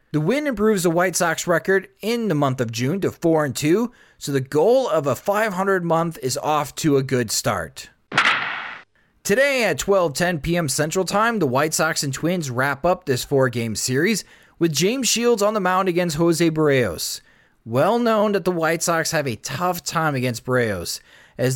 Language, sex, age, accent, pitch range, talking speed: English, male, 30-49, American, 130-180 Hz, 180 wpm